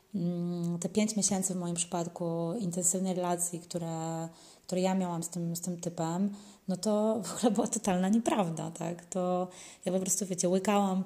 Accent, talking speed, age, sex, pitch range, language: native, 170 wpm, 20-39, female, 175-200 Hz, Polish